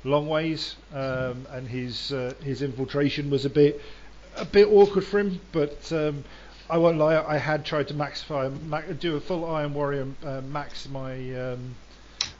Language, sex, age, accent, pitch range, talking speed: English, male, 40-59, British, 125-145 Hz, 170 wpm